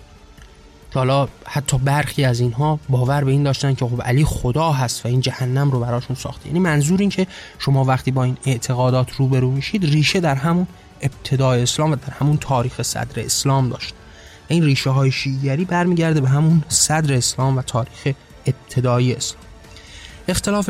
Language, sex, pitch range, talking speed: Persian, male, 125-155 Hz, 165 wpm